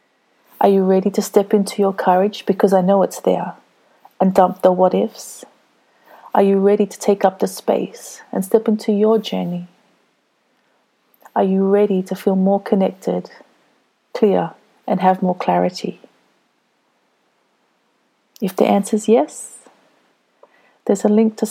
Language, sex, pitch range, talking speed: English, female, 185-210 Hz, 140 wpm